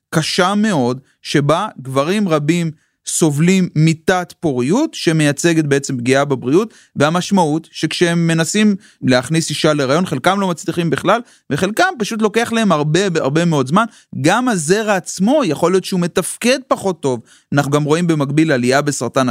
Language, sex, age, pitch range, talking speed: Hebrew, male, 30-49, 140-190 Hz, 140 wpm